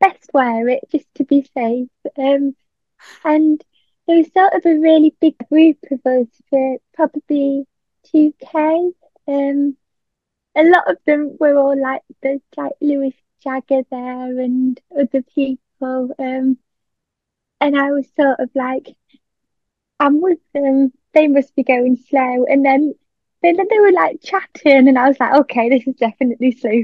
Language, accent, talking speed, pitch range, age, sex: English, British, 155 wpm, 255-300 Hz, 20-39, female